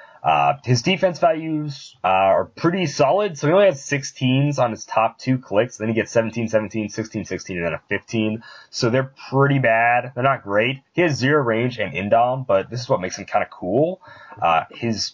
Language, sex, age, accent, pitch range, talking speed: English, male, 20-39, American, 105-140 Hz, 205 wpm